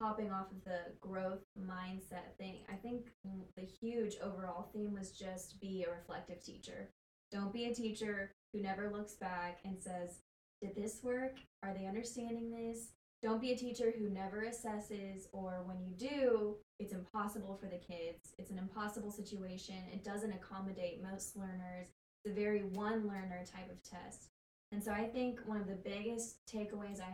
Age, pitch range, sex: 10-29, 190-220 Hz, female